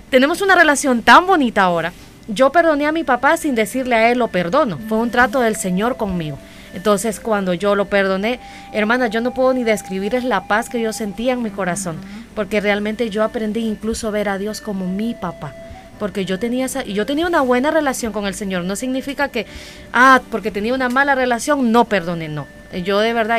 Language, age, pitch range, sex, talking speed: Spanish, 30-49, 195-245 Hz, female, 210 wpm